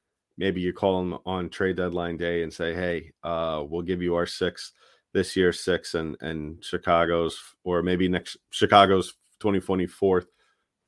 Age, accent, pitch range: 30-49, American, 85-100 Hz